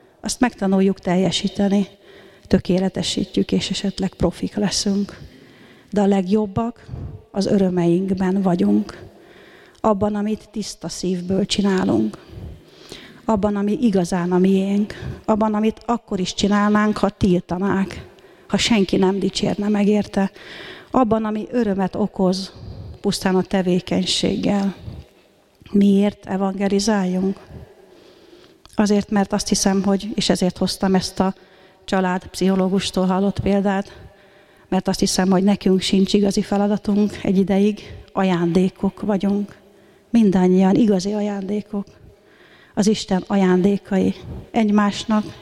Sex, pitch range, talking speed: female, 190-205 Hz, 105 wpm